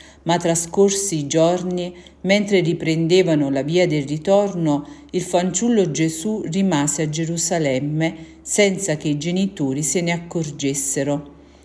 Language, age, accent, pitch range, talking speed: Italian, 50-69, native, 150-180 Hz, 120 wpm